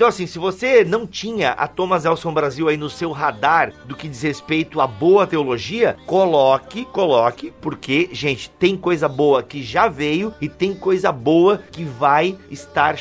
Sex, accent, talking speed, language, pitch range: male, Brazilian, 180 wpm, Portuguese, 140-180 Hz